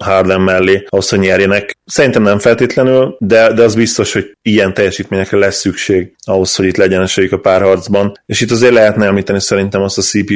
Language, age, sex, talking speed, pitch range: Hungarian, 20-39, male, 190 wpm, 95-105 Hz